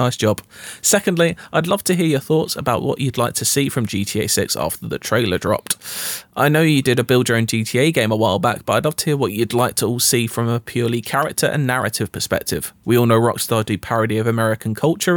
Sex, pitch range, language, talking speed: male, 110-140 Hz, English, 245 wpm